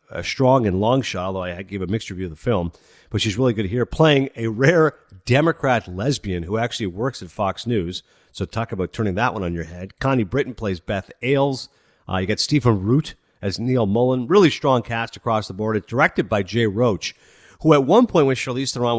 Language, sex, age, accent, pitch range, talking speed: English, male, 50-69, American, 95-135 Hz, 220 wpm